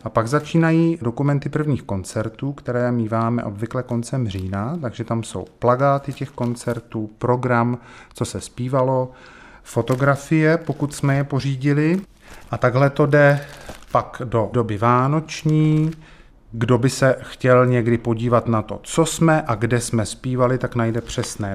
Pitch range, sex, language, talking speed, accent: 115-135 Hz, male, Czech, 140 wpm, native